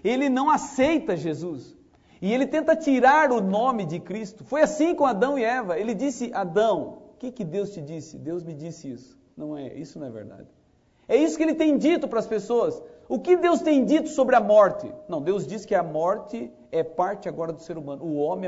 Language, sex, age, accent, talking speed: Portuguese, male, 50-69, Brazilian, 220 wpm